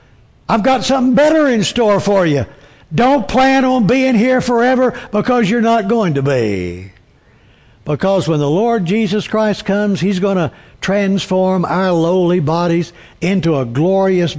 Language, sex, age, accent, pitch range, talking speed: English, male, 60-79, American, 160-225 Hz, 155 wpm